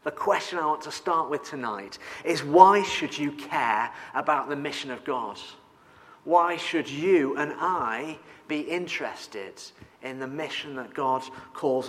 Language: English